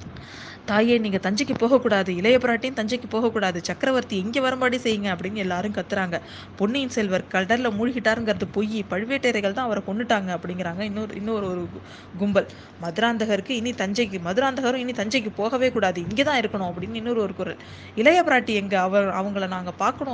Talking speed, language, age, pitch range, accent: 145 wpm, Tamil, 20-39, 185-230 Hz, native